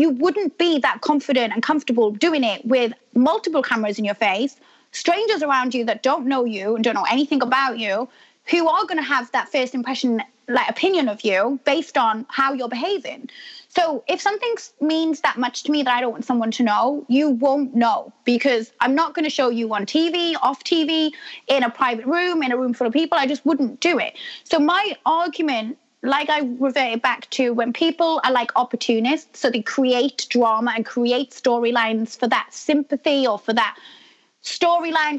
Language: English